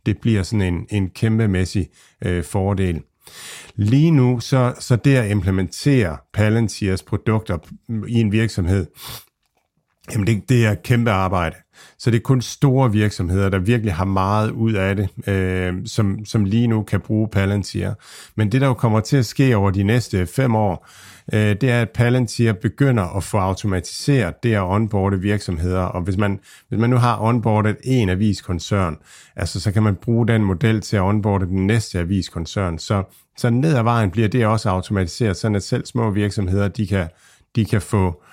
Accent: native